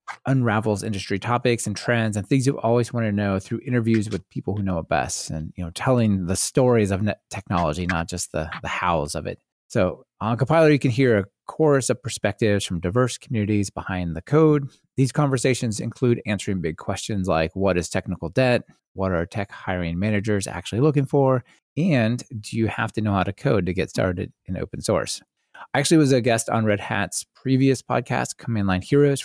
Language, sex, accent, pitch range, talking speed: English, male, American, 95-125 Hz, 205 wpm